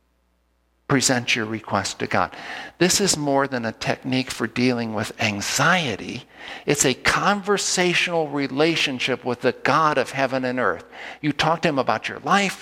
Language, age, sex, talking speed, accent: English, 50-69, male, 155 wpm, American